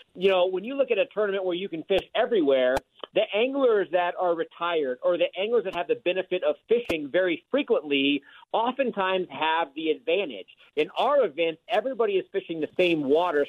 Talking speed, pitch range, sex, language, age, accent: 185 wpm, 165-235 Hz, male, English, 40-59, American